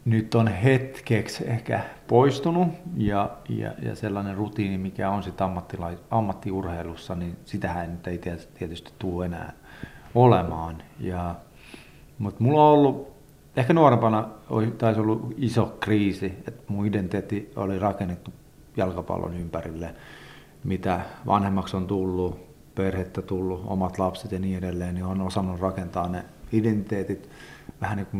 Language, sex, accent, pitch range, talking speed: Finnish, male, native, 90-110 Hz, 125 wpm